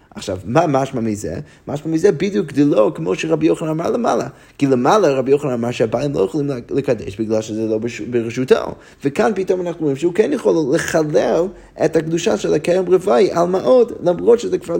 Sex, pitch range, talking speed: male, 130-165 Hz, 185 wpm